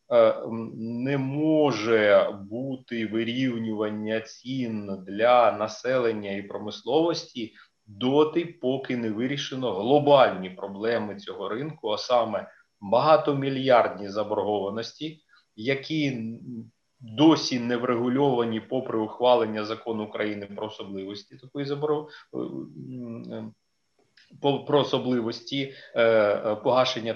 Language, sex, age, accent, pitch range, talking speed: Ukrainian, male, 30-49, native, 110-135 Hz, 80 wpm